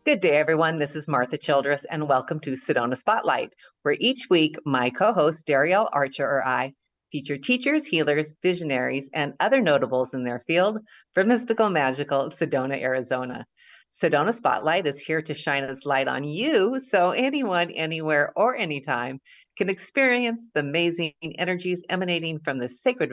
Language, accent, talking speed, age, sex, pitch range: English, American, 155 wpm, 40-59, female, 140-185 Hz